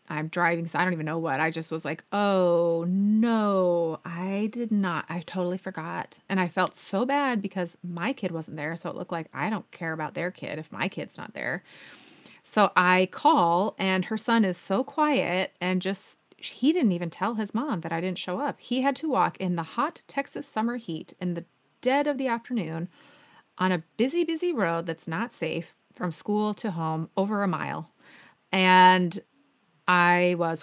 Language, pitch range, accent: English, 170-215 Hz, American